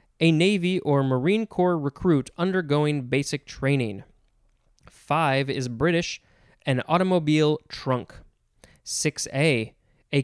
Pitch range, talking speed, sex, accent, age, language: 130-170 Hz, 105 wpm, male, American, 20-39, English